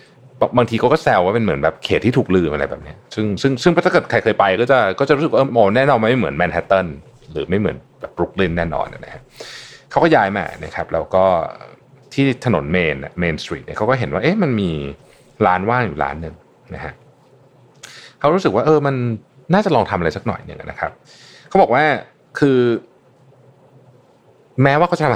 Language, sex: Thai, male